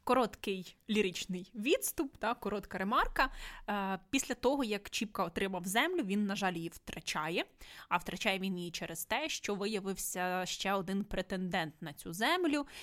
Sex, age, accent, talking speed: female, 20-39, native, 145 wpm